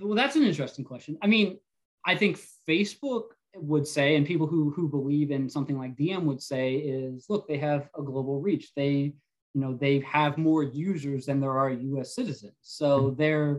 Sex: male